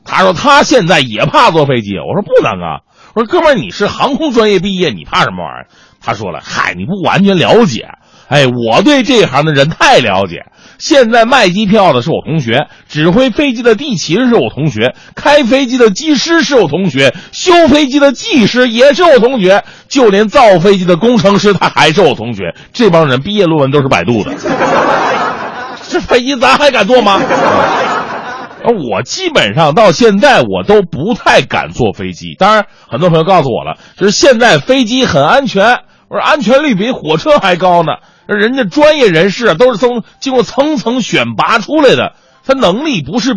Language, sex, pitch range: Chinese, male, 160-265 Hz